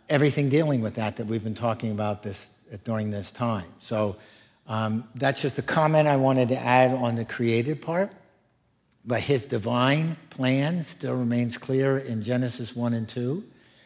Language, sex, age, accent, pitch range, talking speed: English, male, 60-79, American, 115-145 Hz, 170 wpm